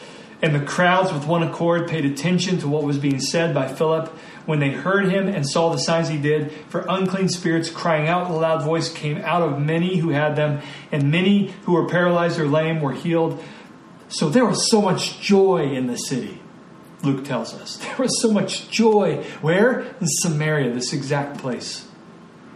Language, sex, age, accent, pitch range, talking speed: English, male, 40-59, American, 150-190 Hz, 195 wpm